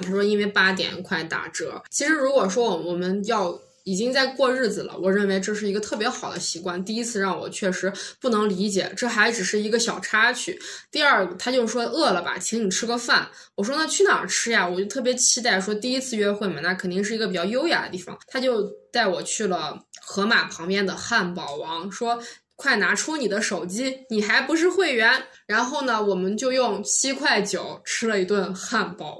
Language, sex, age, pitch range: Chinese, female, 20-39, 190-250 Hz